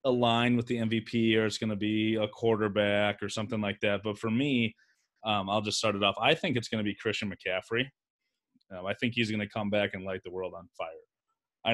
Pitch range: 100-115 Hz